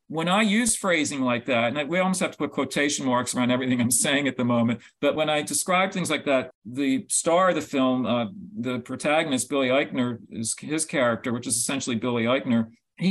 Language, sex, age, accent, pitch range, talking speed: English, male, 50-69, American, 130-170 Hz, 210 wpm